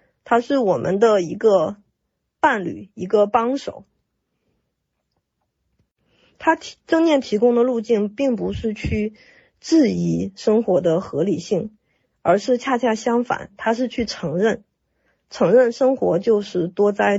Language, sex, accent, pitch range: Chinese, female, native, 190-250 Hz